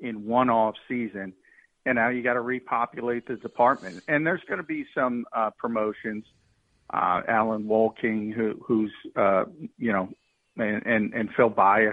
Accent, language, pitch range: American, English, 105-120 Hz